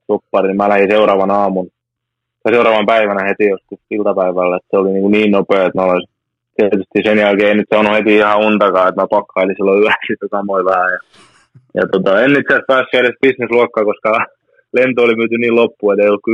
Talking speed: 200 wpm